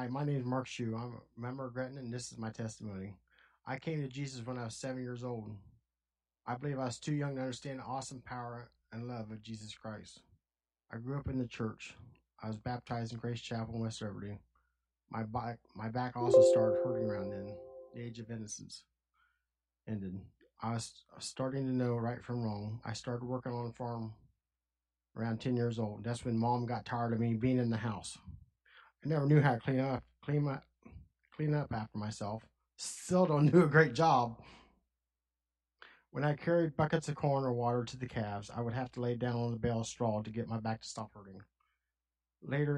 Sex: male